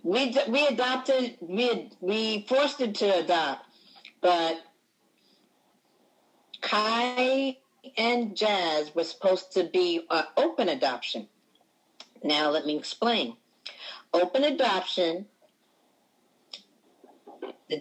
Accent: American